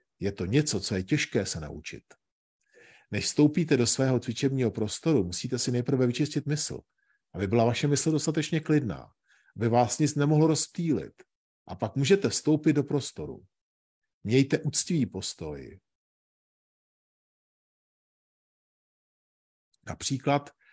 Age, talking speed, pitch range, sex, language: 50-69, 115 wpm, 110-145 Hz, male, Czech